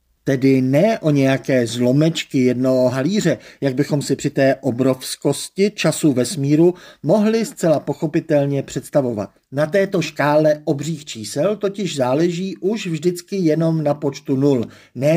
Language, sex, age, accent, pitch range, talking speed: Czech, male, 50-69, native, 130-175 Hz, 130 wpm